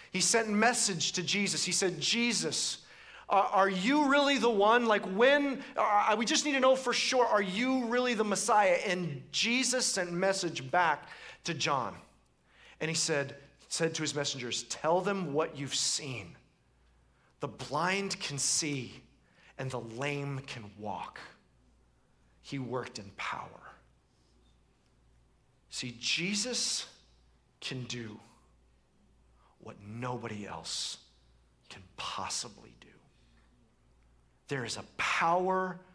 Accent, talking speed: American, 125 wpm